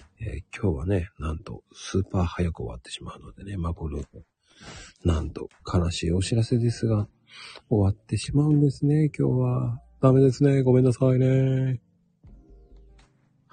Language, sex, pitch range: Japanese, male, 85-130 Hz